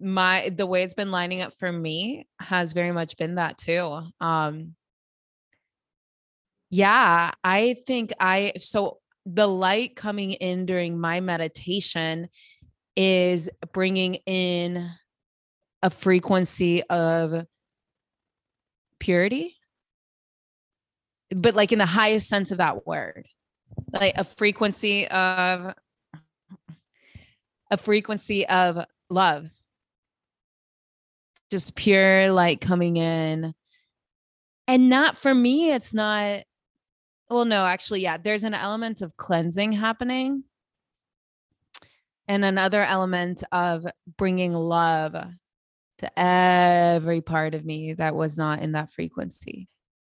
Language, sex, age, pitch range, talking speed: English, female, 20-39, 165-200 Hz, 110 wpm